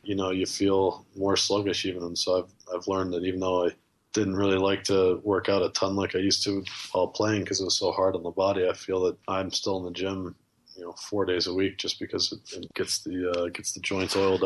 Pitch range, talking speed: 90-95 Hz, 260 wpm